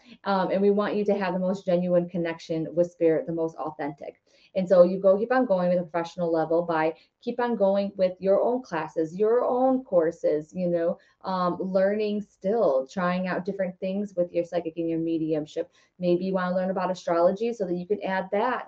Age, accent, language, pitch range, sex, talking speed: 20-39, American, English, 170-205 Hz, female, 210 wpm